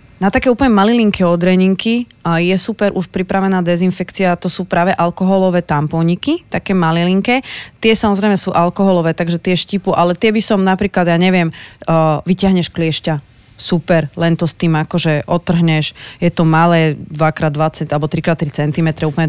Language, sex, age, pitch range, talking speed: Slovak, female, 30-49, 160-195 Hz, 155 wpm